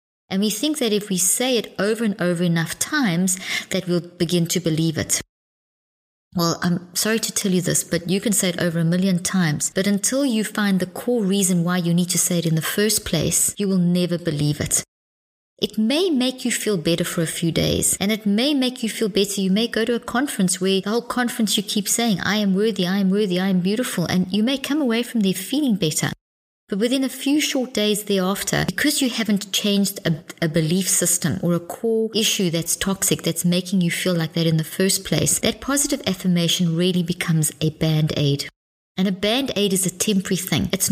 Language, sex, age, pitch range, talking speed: English, female, 30-49, 170-210 Hz, 220 wpm